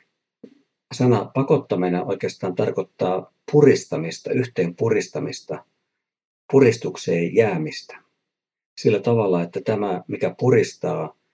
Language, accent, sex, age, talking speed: Finnish, native, male, 50-69, 80 wpm